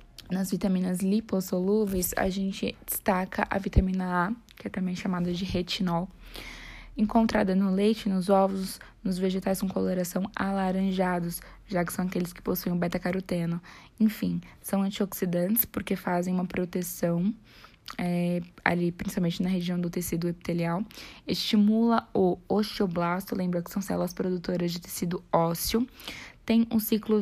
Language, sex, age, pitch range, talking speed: Portuguese, female, 10-29, 180-205 Hz, 135 wpm